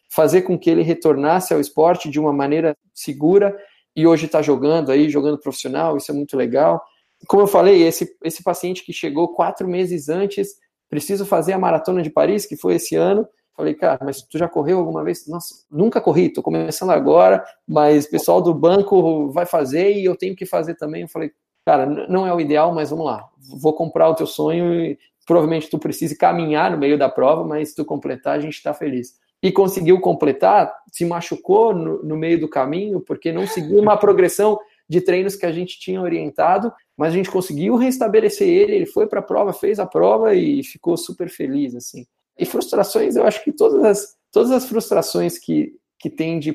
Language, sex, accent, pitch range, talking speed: Portuguese, male, Brazilian, 150-190 Hz, 200 wpm